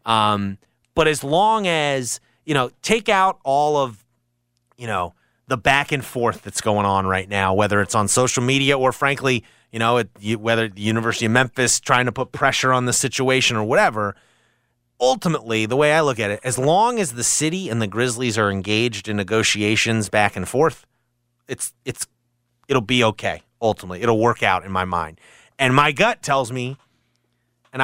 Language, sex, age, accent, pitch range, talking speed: English, male, 30-49, American, 115-155 Hz, 185 wpm